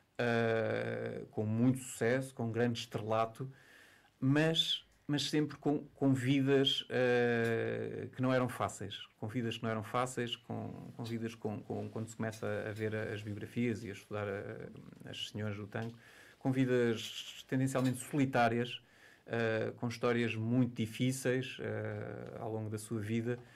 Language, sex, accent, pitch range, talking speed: Portuguese, male, Portuguese, 110-125 Hz, 155 wpm